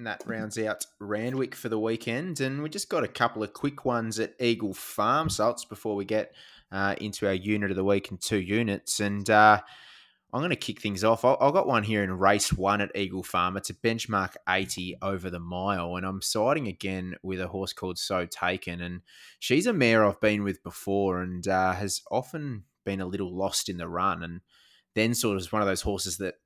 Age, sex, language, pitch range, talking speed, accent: 20-39, male, English, 95-110 Hz, 225 wpm, Australian